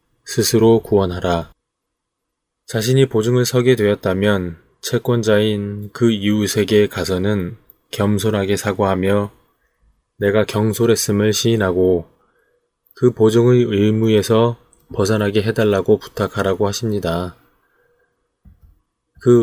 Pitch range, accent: 95-115 Hz, native